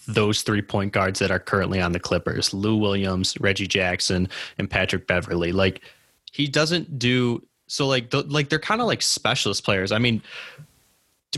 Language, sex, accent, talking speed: English, male, American, 180 wpm